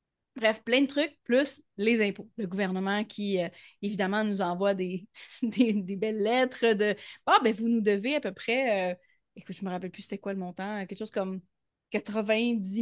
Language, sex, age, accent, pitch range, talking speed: French, female, 30-49, Canadian, 190-230 Hz, 215 wpm